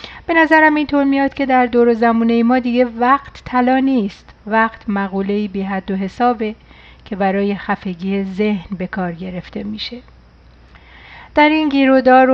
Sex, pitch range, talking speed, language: female, 195-240 Hz, 155 wpm, Persian